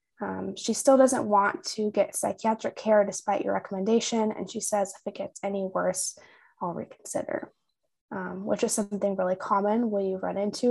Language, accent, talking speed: English, American, 180 wpm